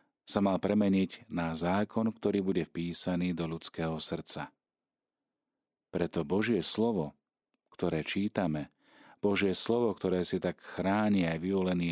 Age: 40-59